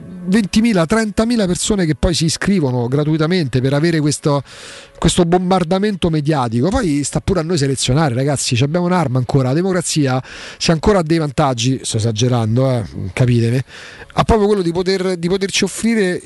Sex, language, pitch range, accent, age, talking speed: male, Italian, 140-185 Hz, native, 40-59, 160 wpm